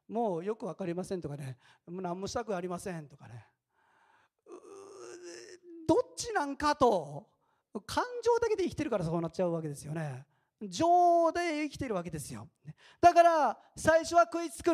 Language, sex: Japanese, male